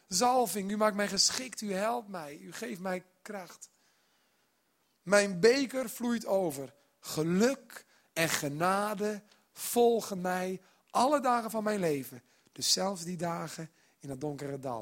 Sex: male